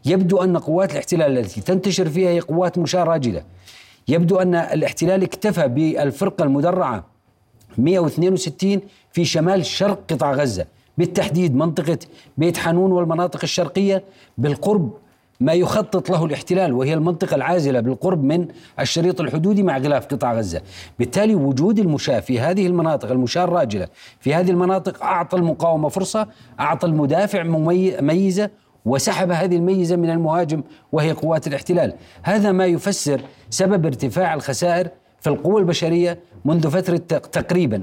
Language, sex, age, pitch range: Arabic, male, 40-59, 145-180 Hz